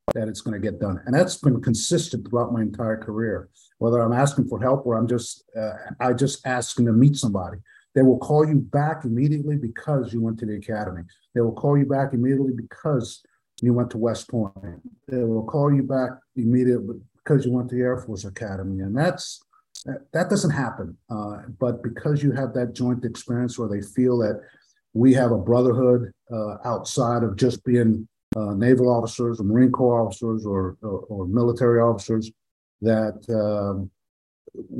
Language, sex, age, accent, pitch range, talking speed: English, male, 50-69, American, 100-125 Hz, 185 wpm